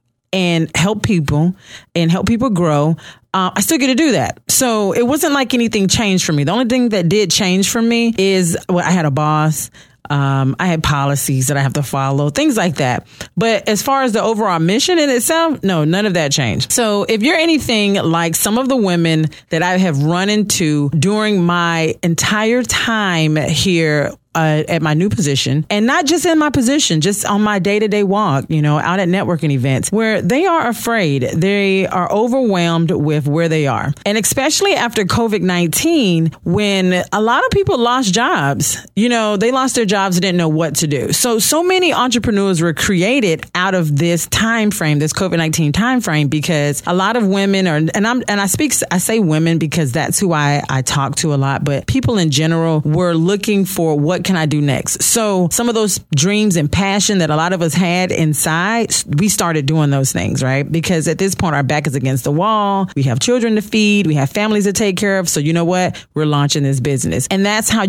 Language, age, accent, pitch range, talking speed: English, 40-59, American, 155-215 Hz, 215 wpm